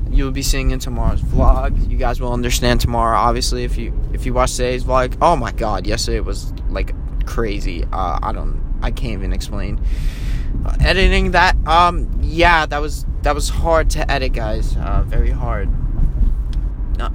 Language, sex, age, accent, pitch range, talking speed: English, male, 20-39, American, 110-145 Hz, 180 wpm